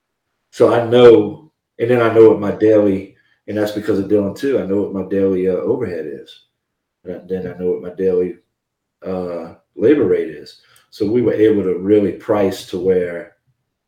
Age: 40-59